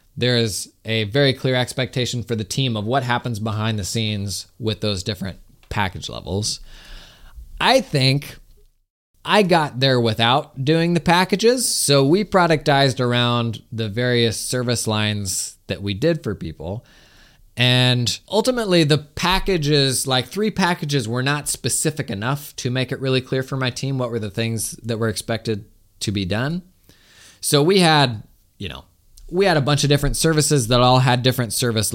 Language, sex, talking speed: English, male, 165 wpm